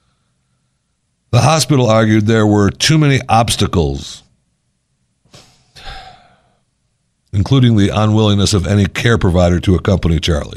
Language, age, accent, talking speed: English, 60-79, American, 100 wpm